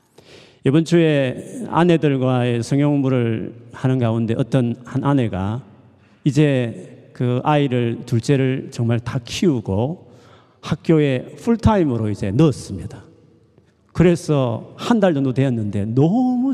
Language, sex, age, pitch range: Korean, male, 40-59, 115-155 Hz